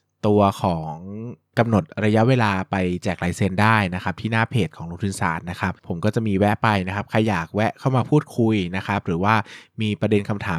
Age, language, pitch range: 20-39, Thai, 95-115 Hz